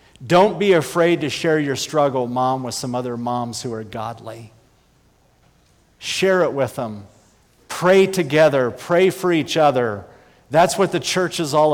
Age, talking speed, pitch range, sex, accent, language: 50-69, 160 wpm, 110-145 Hz, male, American, English